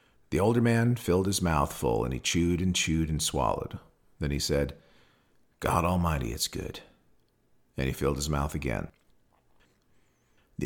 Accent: American